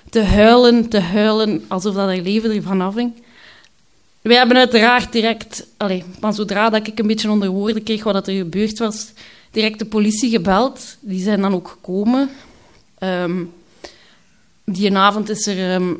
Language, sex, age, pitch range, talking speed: Dutch, female, 20-39, 190-230 Hz, 165 wpm